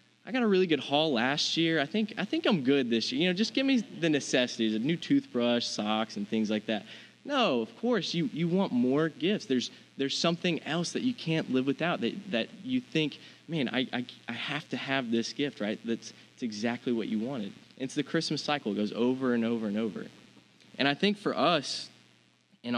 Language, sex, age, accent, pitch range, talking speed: English, male, 20-39, American, 105-135 Hz, 225 wpm